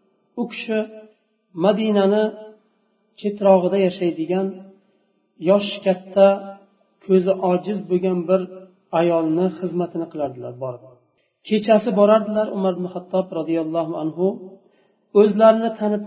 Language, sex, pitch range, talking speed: Russian, male, 180-210 Hz, 100 wpm